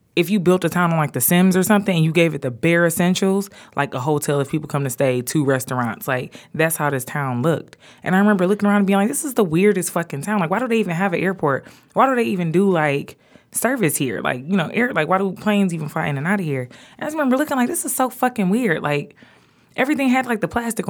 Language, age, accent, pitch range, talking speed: English, 20-39, American, 140-195 Hz, 270 wpm